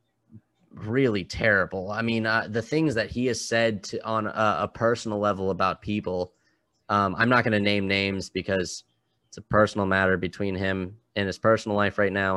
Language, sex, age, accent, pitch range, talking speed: English, male, 20-39, American, 95-110 Hz, 190 wpm